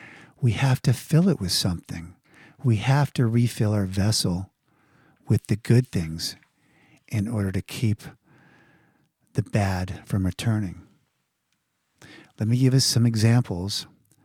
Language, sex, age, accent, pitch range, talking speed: English, male, 50-69, American, 95-130 Hz, 130 wpm